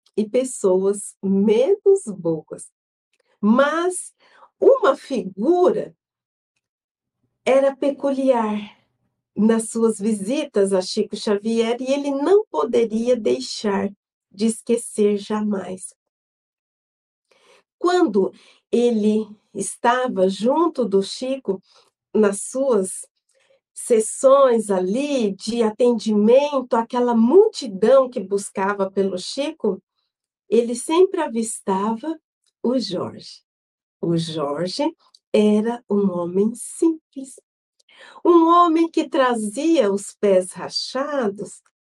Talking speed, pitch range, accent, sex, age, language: 85 wpm, 205-280 Hz, Brazilian, female, 50-69, Portuguese